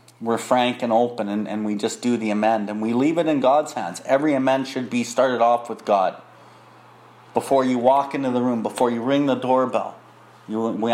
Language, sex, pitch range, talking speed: English, male, 110-130 Hz, 210 wpm